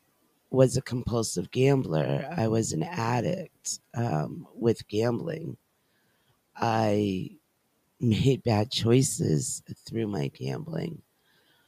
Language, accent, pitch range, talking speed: English, American, 110-145 Hz, 90 wpm